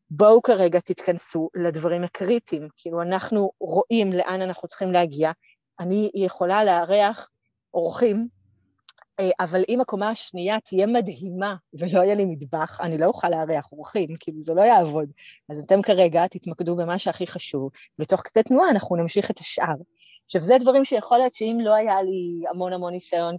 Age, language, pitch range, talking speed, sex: 30-49, Hebrew, 170-210 Hz, 155 wpm, female